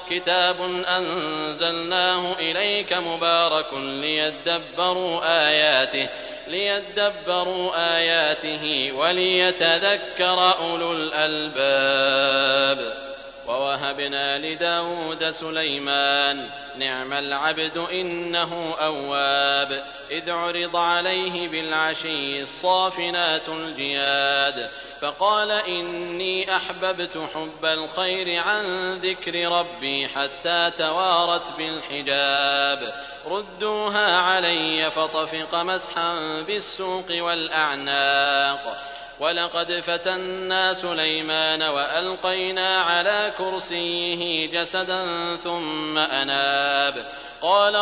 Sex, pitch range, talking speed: male, 150-180 Hz, 65 wpm